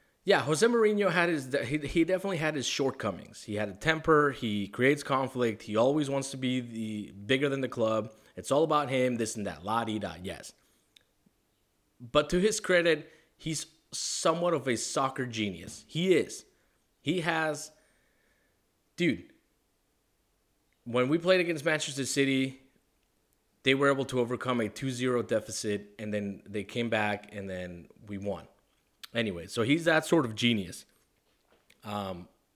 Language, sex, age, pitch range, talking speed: English, male, 30-49, 105-150 Hz, 150 wpm